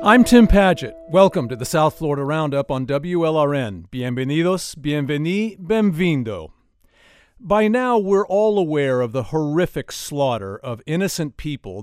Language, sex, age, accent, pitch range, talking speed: English, male, 50-69, American, 130-175 Hz, 130 wpm